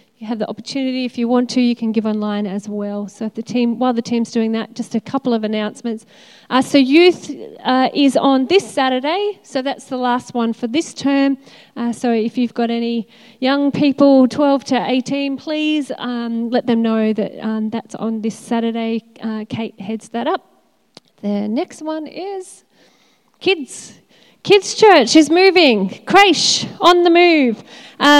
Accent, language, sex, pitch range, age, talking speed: Australian, English, female, 220-270 Hz, 30-49, 180 wpm